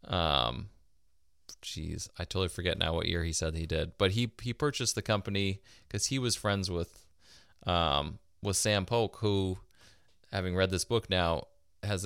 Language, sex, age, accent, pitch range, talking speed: English, male, 20-39, American, 85-100 Hz, 170 wpm